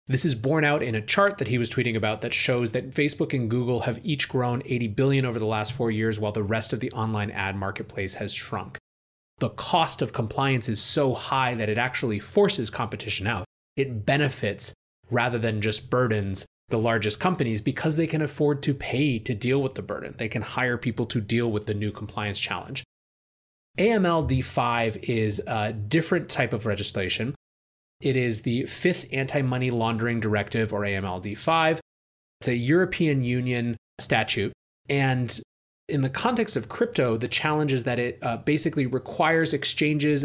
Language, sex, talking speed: English, male, 175 wpm